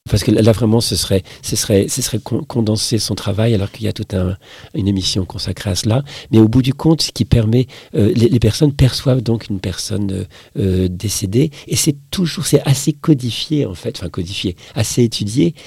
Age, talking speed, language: 50-69, 205 wpm, French